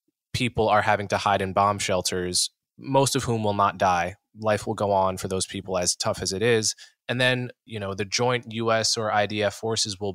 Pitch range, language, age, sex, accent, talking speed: 95-115 Hz, English, 20-39, male, American, 220 wpm